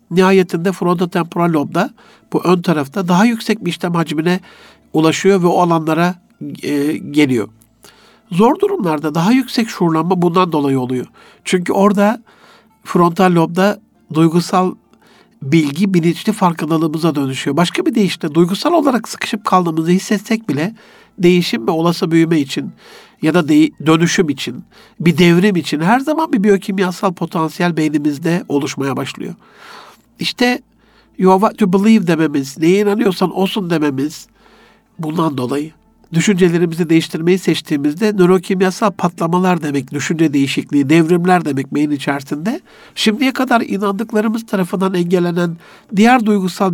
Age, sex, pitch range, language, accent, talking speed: 60-79, male, 160-205 Hz, Turkish, native, 120 wpm